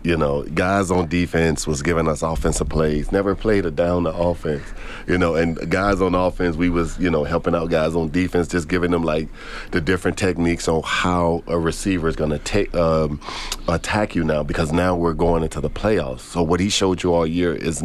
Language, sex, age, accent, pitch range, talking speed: English, male, 40-59, American, 80-95 Hz, 220 wpm